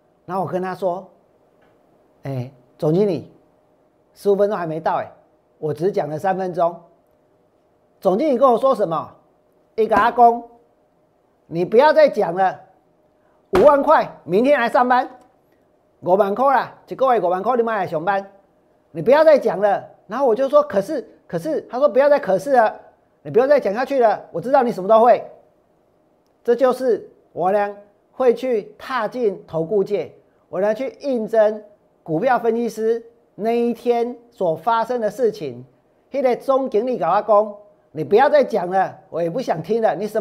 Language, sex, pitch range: Chinese, male, 185-255 Hz